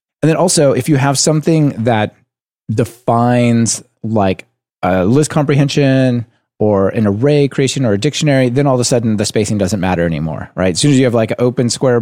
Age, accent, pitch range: 30-49, American, 105-140 Hz